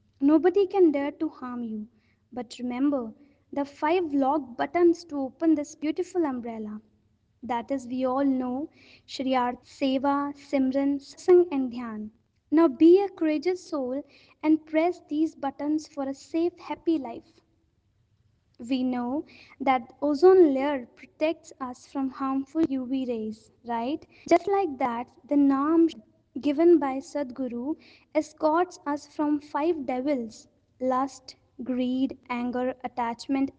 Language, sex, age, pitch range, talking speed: English, female, 20-39, 255-315 Hz, 125 wpm